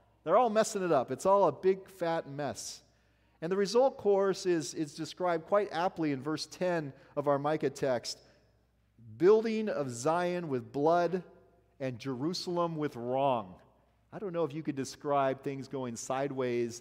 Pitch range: 130-175 Hz